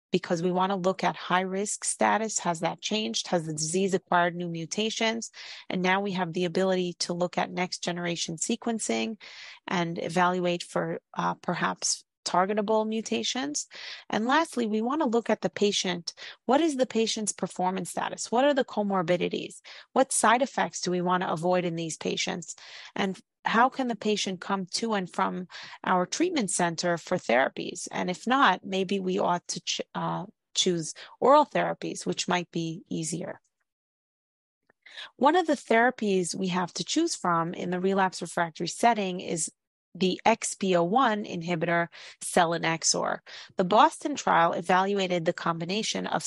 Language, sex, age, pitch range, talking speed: English, female, 30-49, 175-220 Hz, 155 wpm